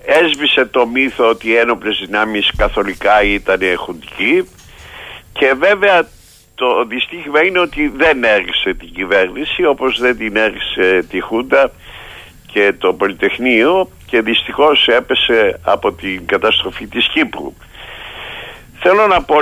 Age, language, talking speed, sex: 50-69, Greek, 120 wpm, male